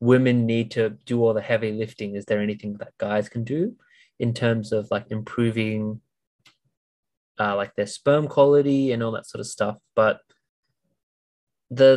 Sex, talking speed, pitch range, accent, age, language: male, 165 wpm, 105-130 Hz, Australian, 20-39, English